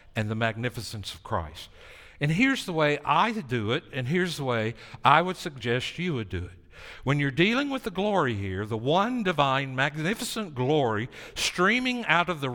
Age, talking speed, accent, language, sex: 60-79, 185 wpm, American, English, male